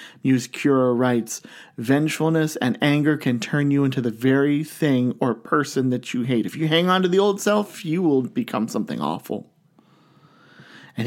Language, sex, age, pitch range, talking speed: English, male, 40-59, 120-145 Hz, 175 wpm